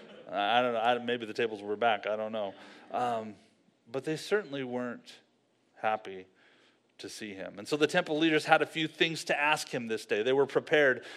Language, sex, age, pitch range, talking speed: English, male, 30-49, 120-180 Hz, 200 wpm